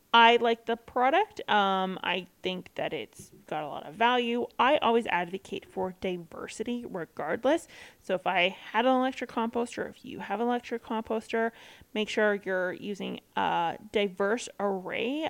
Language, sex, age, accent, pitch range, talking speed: English, female, 30-49, American, 205-245 Hz, 155 wpm